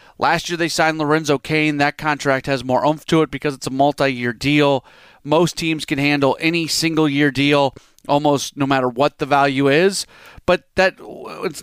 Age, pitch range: 30-49, 135-170 Hz